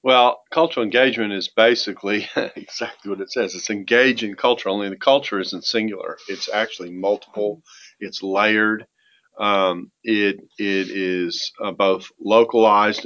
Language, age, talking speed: English, 40-59, 140 wpm